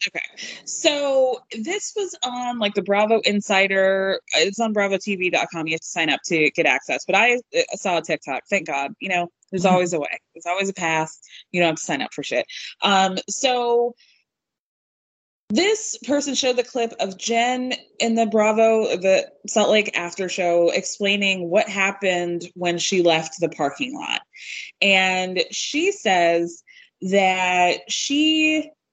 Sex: female